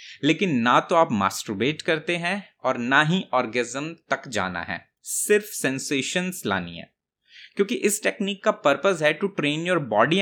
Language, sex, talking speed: Hindi, male, 165 wpm